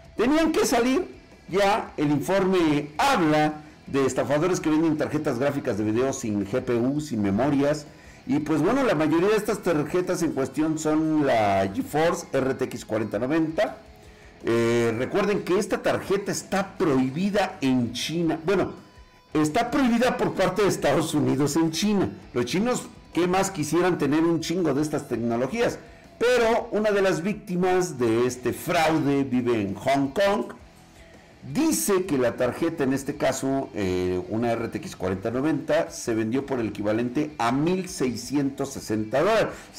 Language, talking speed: Spanish, 140 wpm